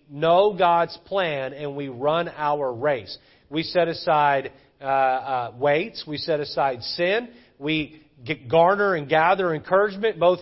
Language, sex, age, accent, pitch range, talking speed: English, male, 40-59, American, 150-190 Hz, 140 wpm